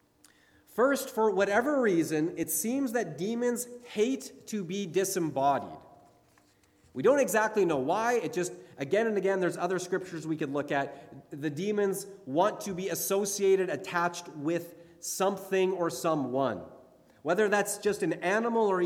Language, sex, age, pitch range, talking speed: English, male, 30-49, 160-215 Hz, 145 wpm